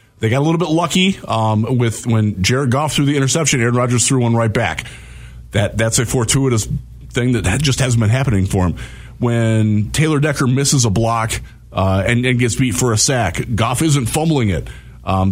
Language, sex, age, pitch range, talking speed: English, male, 30-49, 110-140 Hz, 200 wpm